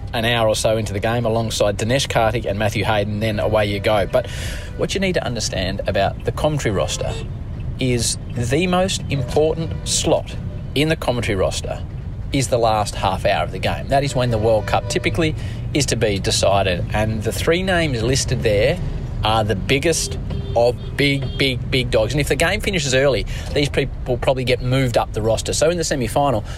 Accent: Australian